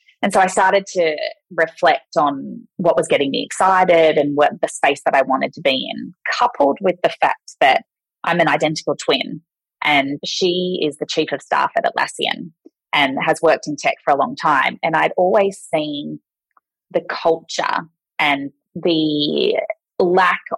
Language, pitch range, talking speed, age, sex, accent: English, 155-240 Hz, 170 wpm, 20-39, female, Australian